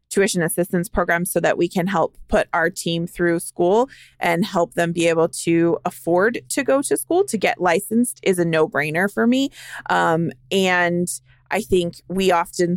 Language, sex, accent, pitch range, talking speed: English, female, American, 175-220 Hz, 180 wpm